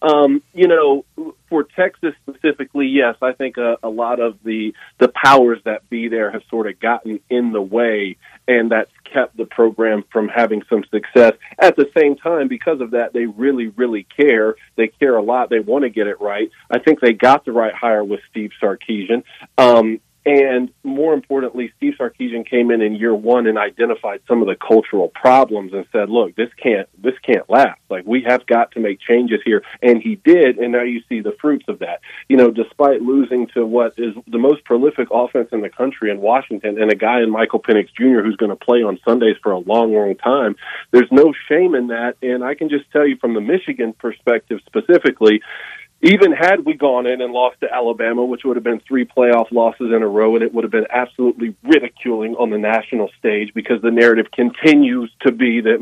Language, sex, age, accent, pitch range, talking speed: English, male, 40-59, American, 110-135 Hz, 215 wpm